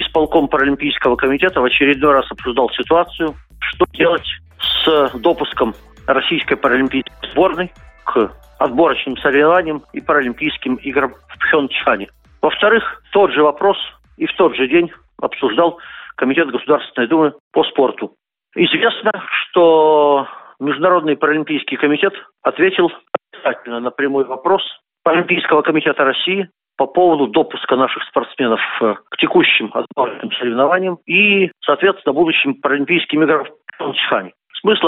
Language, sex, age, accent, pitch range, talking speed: Russian, male, 50-69, native, 135-185 Hz, 115 wpm